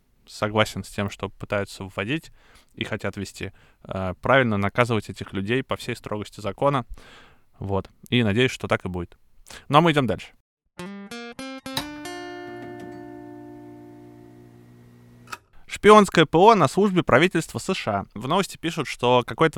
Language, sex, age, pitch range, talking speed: Russian, male, 20-39, 105-135 Hz, 130 wpm